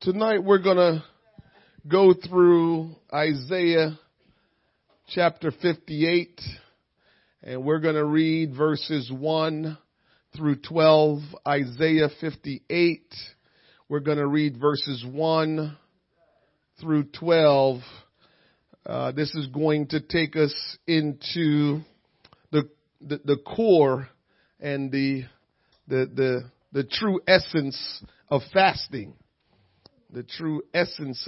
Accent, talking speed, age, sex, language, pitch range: American, 100 wpm, 40-59, male, English, 145-170 Hz